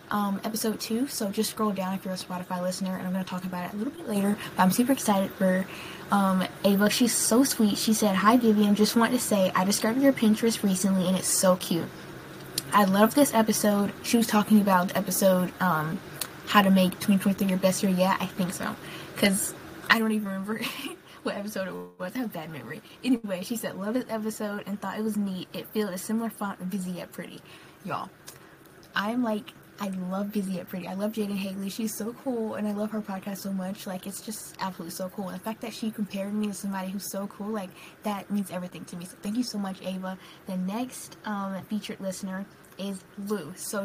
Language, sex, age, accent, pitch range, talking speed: English, female, 10-29, American, 185-220 Hz, 225 wpm